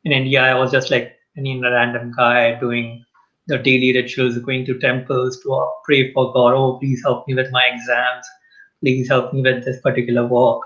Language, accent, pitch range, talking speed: English, Indian, 125-145 Hz, 195 wpm